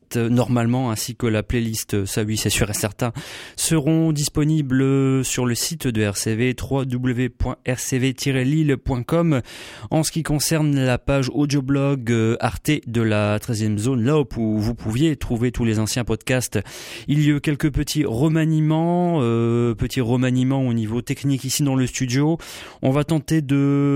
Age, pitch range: 30-49, 115-145 Hz